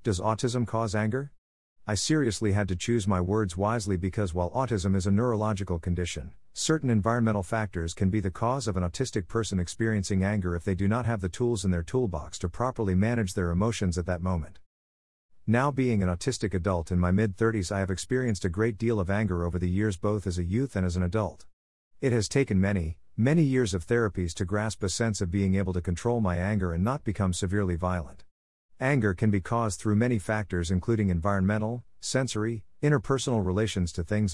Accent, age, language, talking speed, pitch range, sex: American, 50-69, English, 200 wpm, 90-115 Hz, male